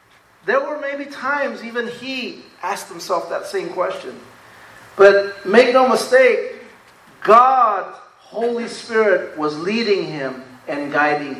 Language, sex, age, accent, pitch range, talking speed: English, male, 40-59, American, 210-280 Hz, 120 wpm